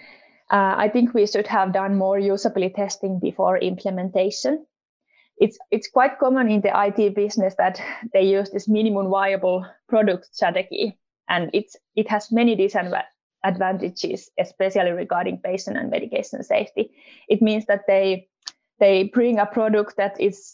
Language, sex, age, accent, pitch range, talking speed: English, female, 20-39, Finnish, 190-220 Hz, 145 wpm